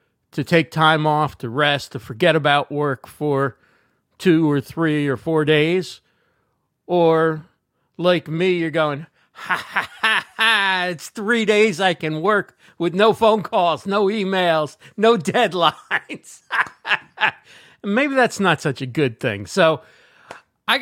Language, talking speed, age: English, 140 wpm, 40-59